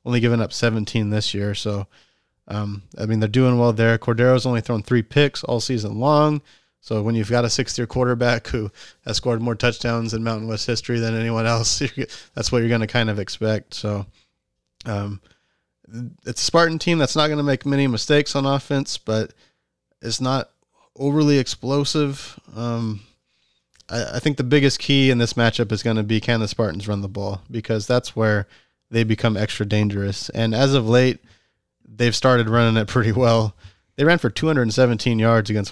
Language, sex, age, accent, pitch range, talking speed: English, male, 20-39, American, 105-125 Hz, 190 wpm